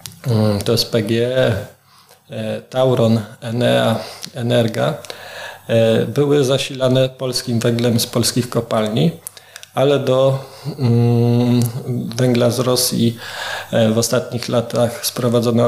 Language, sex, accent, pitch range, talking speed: Polish, male, native, 115-125 Hz, 85 wpm